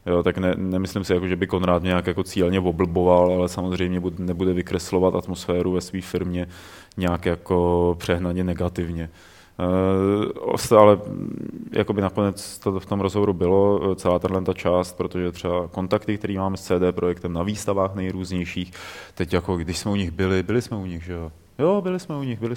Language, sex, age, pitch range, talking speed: Czech, male, 20-39, 90-95 Hz, 180 wpm